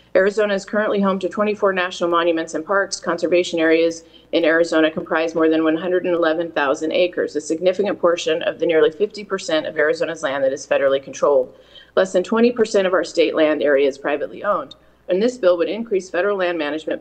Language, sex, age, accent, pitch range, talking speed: English, female, 30-49, American, 160-195 Hz, 185 wpm